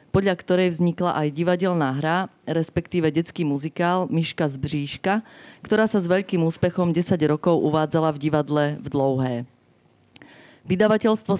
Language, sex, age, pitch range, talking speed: Slovak, female, 30-49, 145-175 Hz, 130 wpm